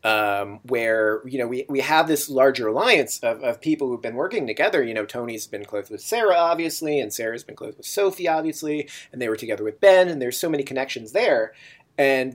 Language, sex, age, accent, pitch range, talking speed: English, male, 30-49, American, 125-160 Hz, 220 wpm